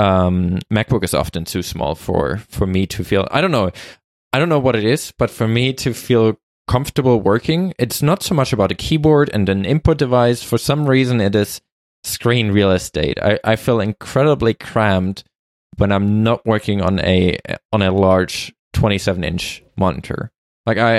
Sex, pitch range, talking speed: male, 95-125 Hz, 185 wpm